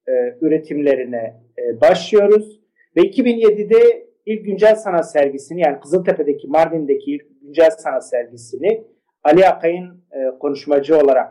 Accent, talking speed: native, 115 wpm